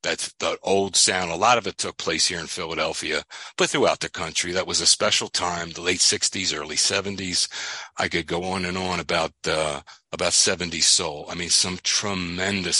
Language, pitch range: English, 100-145 Hz